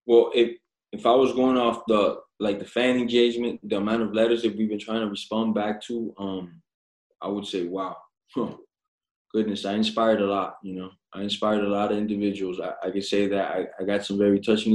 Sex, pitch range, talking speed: male, 95-110 Hz, 220 wpm